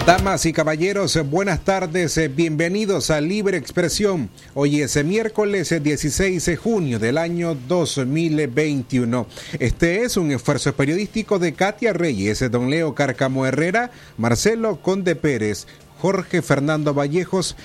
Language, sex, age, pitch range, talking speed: Spanish, male, 30-49, 135-180 Hz, 120 wpm